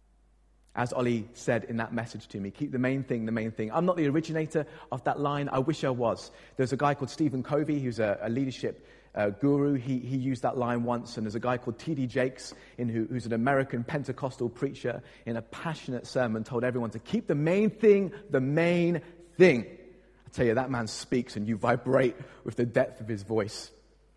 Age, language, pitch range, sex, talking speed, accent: 30-49, English, 120-155 Hz, male, 210 wpm, British